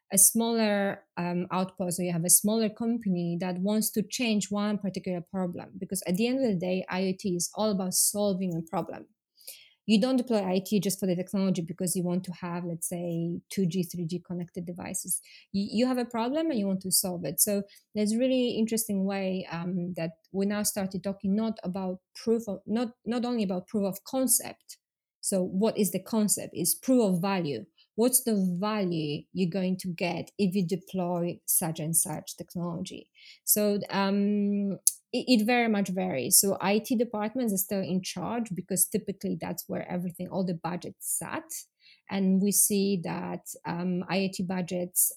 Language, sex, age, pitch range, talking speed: English, female, 20-39, 180-210 Hz, 180 wpm